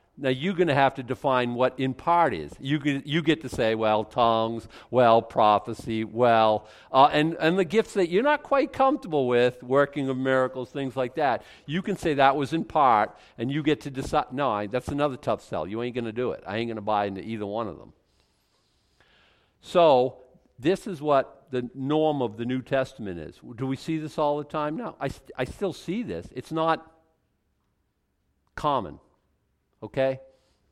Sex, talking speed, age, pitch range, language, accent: male, 200 wpm, 50-69, 115-150 Hz, English, American